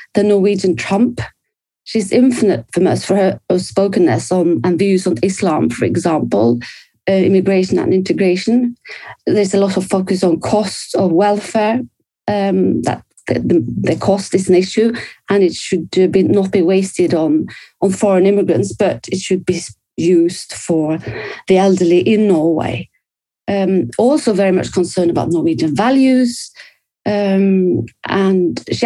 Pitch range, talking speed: 180-210 Hz, 140 wpm